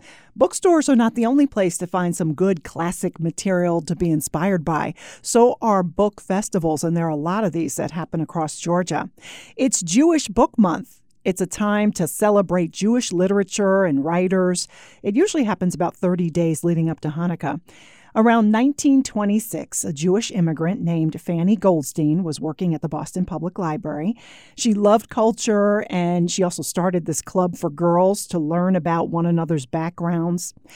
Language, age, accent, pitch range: English, 40-59, American, 165-205 Hz